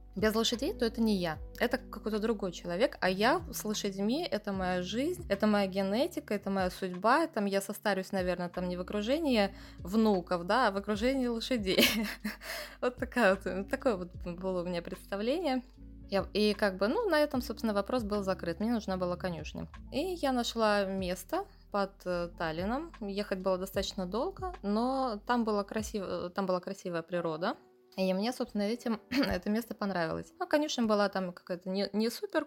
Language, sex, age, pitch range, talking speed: Russian, female, 20-39, 190-250 Hz, 155 wpm